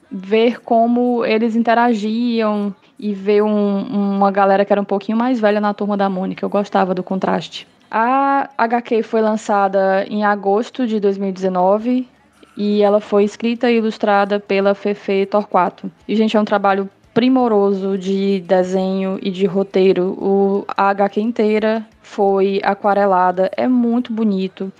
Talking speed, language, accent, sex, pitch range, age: 140 wpm, Portuguese, Brazilian, female, 200-235 Hz, 10-29